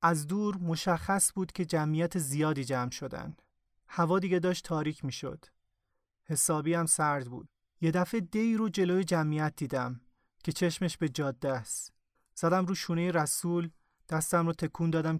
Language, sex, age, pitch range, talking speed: Persian, male, 30-49, 140-175 Hz, 145 wpm